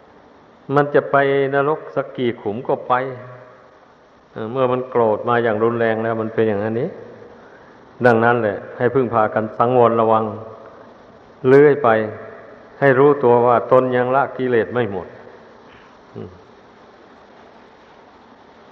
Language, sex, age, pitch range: Thai, male, 60-79, 120-145 Hz